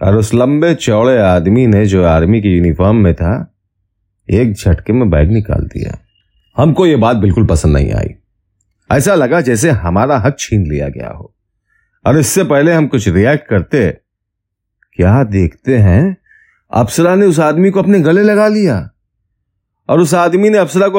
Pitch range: 95-145 Hz